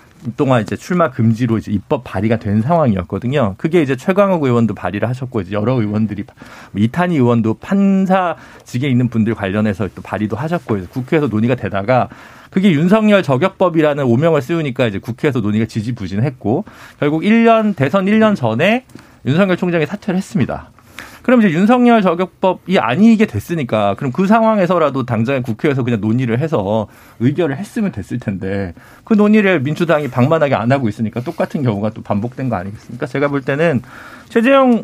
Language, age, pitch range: Korean, 40-59, 115-180 Hz